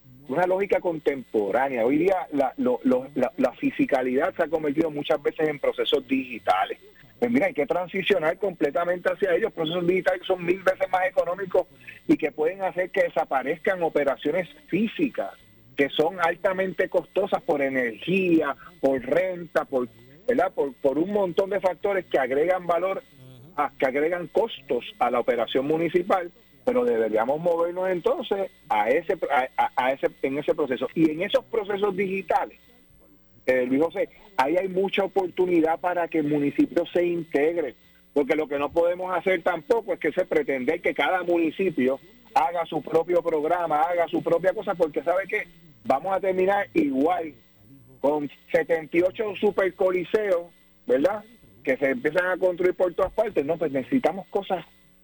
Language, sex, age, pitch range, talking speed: Spanish, male, 40-59, 155-200 Hz, 155 wpm